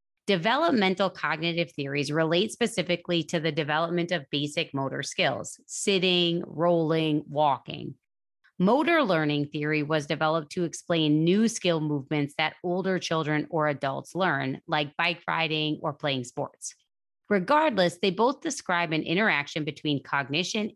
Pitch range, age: 150-195 Hz, 30-49